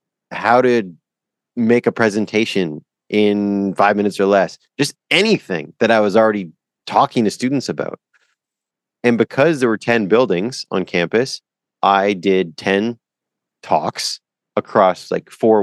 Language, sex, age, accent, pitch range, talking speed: English, male, 30-49, American, 95-120 Hz, 135 wpm